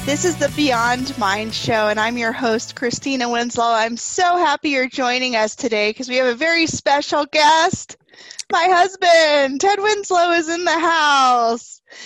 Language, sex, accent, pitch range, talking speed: English, female, American, 215-275 Hz, 170 wpm